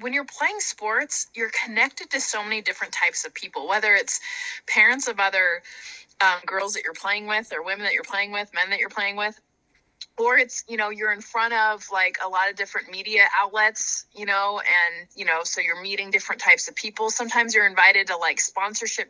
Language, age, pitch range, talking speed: English, 20-39, 190-285 Hz, 210 wpm